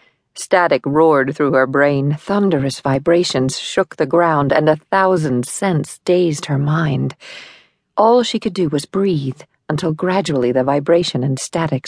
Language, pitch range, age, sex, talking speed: English, 140-185 Hz, 50-69, female, 145 wpm